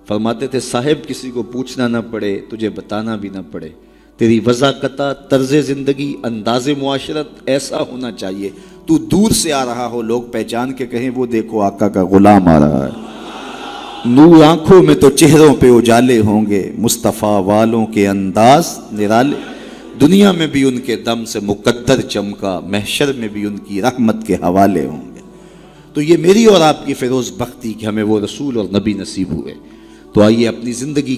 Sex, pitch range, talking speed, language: male, 105-140 Hz, 180 wpm, Urdu